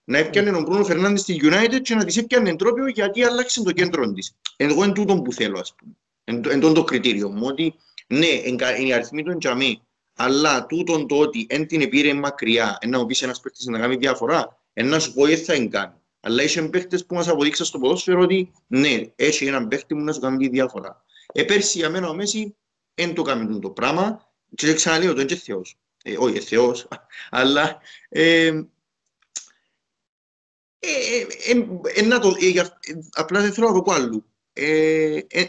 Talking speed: 125 wpm